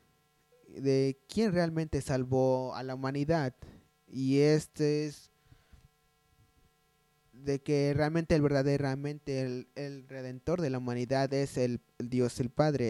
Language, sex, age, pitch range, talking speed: English, male, 20-39, 130-150 Hz, 125 wpm